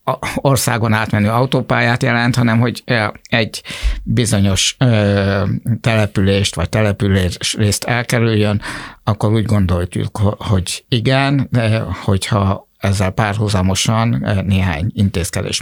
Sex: male